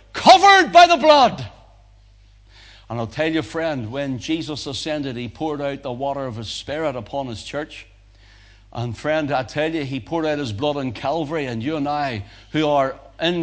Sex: male